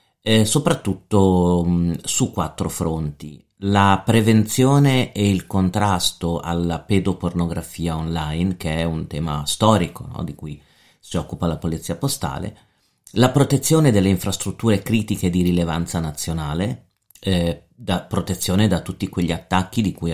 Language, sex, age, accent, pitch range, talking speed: Italian, male, 40-59, native, 85-110 Hz, 120 wpm